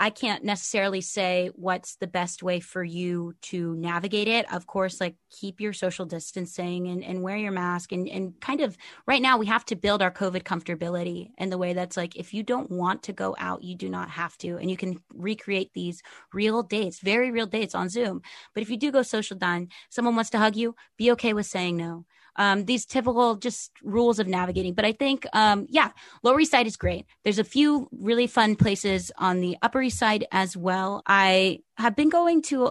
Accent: American